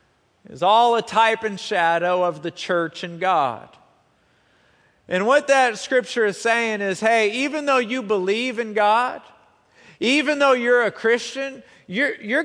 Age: 40-59